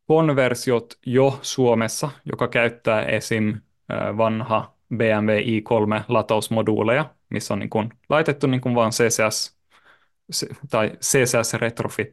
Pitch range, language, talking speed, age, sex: 110-135 Hz, Finnish, 80 wpm, 20-39, male